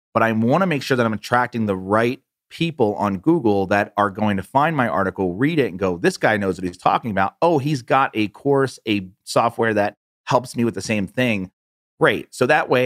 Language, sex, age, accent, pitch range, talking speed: English, male, 30-49, American, 95-120 Hz, 235 wpm